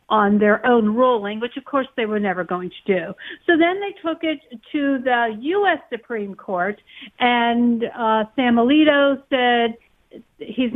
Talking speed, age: 160 wpm, 50-69